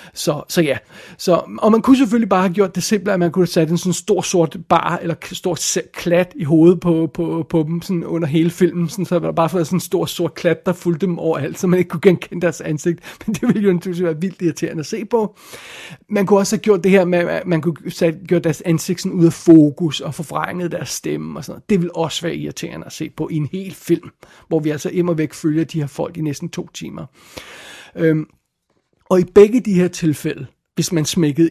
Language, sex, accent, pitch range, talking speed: Danish, male, native, 160-180 Hz, 240 wpm